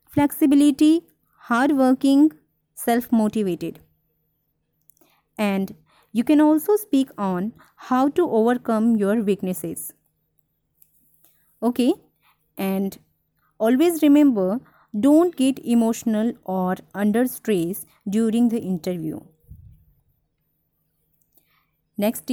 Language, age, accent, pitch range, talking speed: Hindi, 20-39, native, 195-285 Hz, 80 wpm